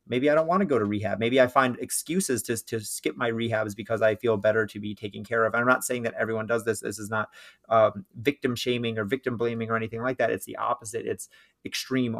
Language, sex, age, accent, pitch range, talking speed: English, male, 30-49, American, 110-125 Hz, 255 wpm